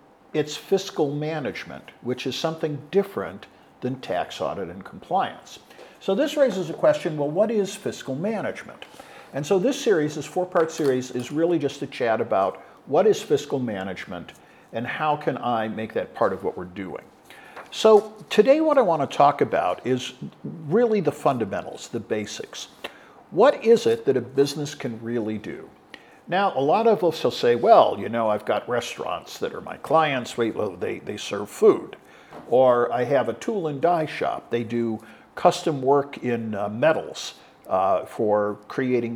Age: 50-69